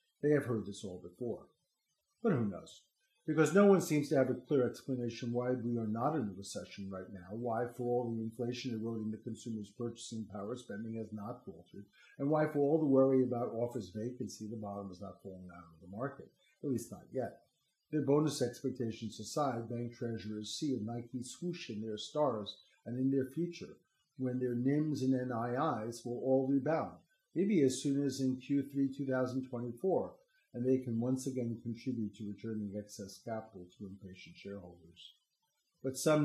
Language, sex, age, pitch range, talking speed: English, male, 50-69, 110-140 Hz, 180 wpm